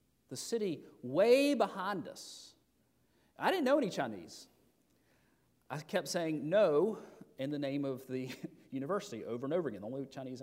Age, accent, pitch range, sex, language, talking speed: 40-59, American, 130-185 Hz, male, English, 155 wpm